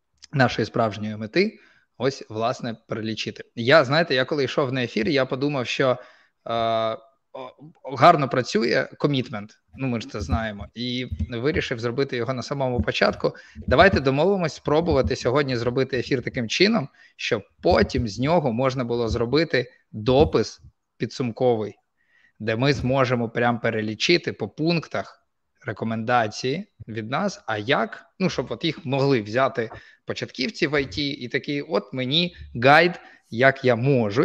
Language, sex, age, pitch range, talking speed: Ukrainian, male, 20-39, 115-145 Hz, 135 wpm